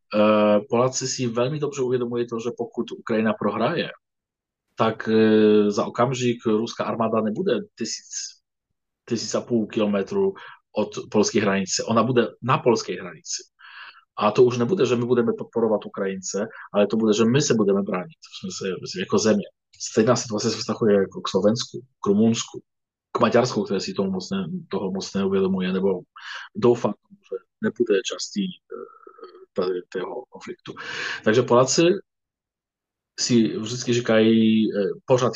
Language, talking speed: Slovak, 135 wpm